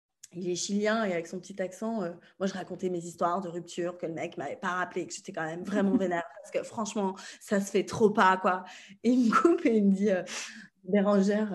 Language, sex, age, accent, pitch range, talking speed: French, female, 20-39, French, 180-235 Hz, 250 wpm